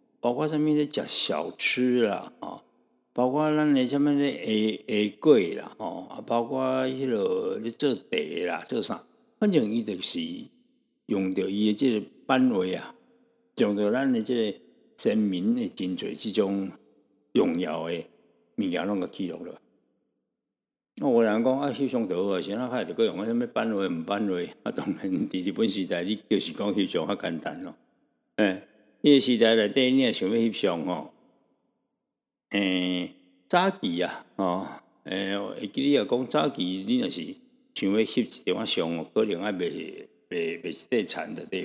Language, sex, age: Chinese, male, 60-79